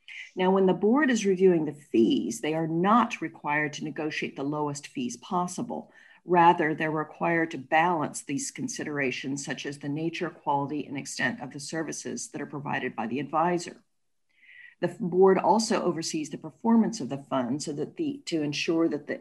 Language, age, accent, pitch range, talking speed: English, 50-69, American, 145-190 Hz, 180 wpm